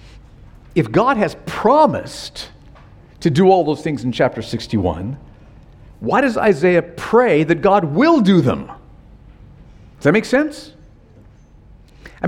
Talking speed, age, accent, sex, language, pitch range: 125 wpm, 50-69, American, male, English, 135-190 Hz